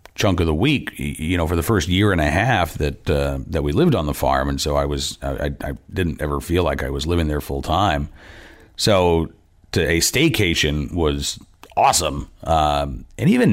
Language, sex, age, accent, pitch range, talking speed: English, male, 40-59, American, 75-95 Hz, 205 wpm